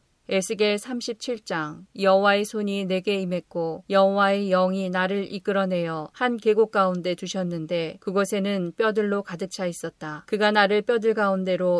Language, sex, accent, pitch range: Korean, female, native, 180-205 Hz